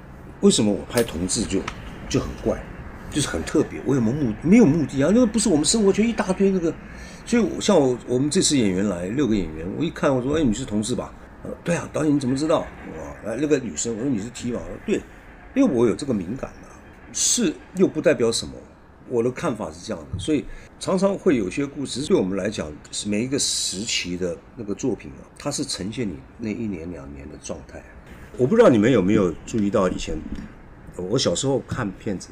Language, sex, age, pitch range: Chinese, male, 50-69, 90-135 Hz